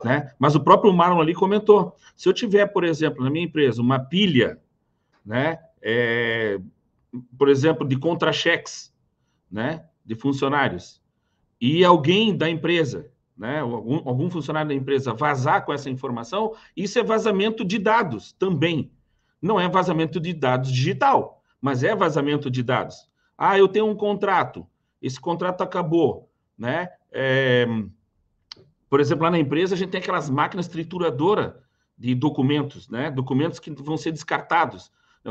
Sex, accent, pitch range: male, Brazilian, 135-180 Hz